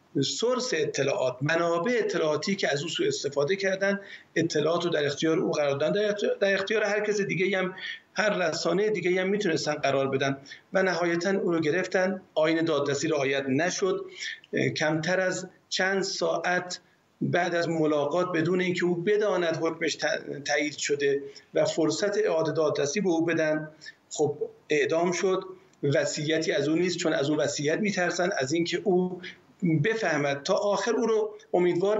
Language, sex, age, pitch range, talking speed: Persian, male, 50-69, 155-205 Hz, 150 wpm